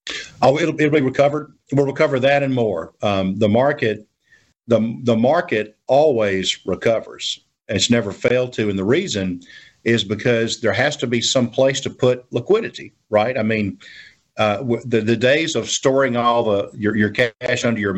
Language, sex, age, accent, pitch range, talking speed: English, male, 50-69, American, 105-135 Hz, 175 wpm